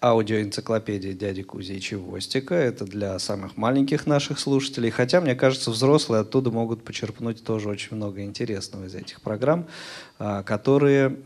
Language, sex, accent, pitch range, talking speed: Russian, male, native, 105-130 Hz, 140 wpm